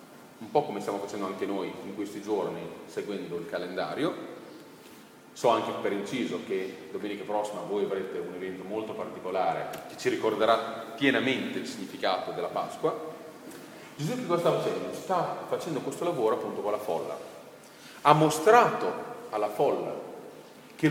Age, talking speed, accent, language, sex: 40-59, 150 wpm, native, Italian, male